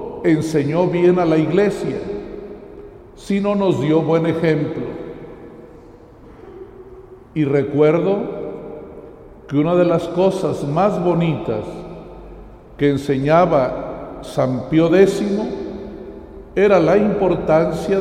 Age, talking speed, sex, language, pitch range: 60-79, 90 wpm, male, Spanish, 150-190 Hz